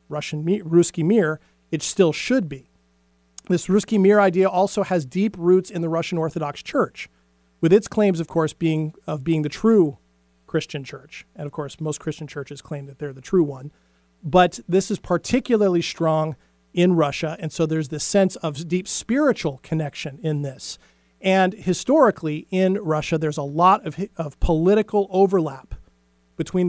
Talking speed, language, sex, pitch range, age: 165 wpm, English, male, 145-190 Hz, 40-59